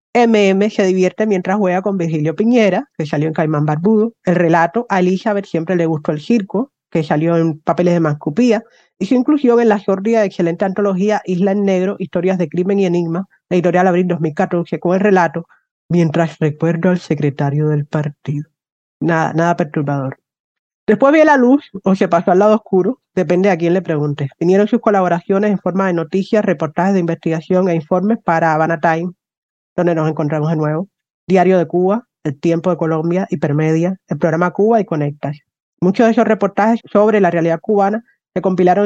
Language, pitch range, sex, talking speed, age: Spanish, 170-205 Hz, female, 185 wpm, 30-49